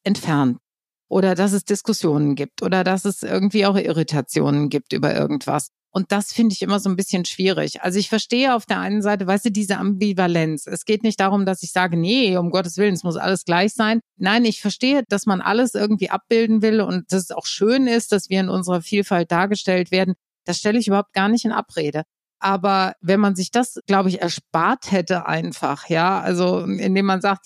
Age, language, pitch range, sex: 50-69, German, 180-215 Hz, female